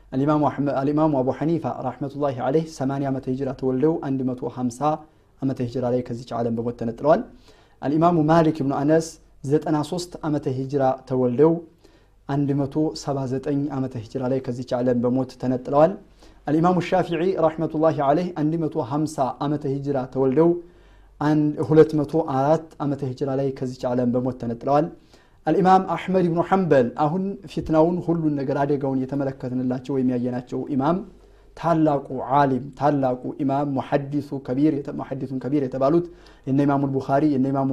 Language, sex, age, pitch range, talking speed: Amharic, male, 30-49, 130-150 Hz, 120 wpm